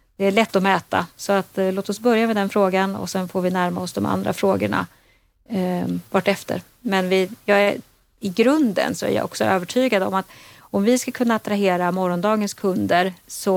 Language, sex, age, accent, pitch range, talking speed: Swedish, female, 30-49, native, 185-210 Hz, 205 wpm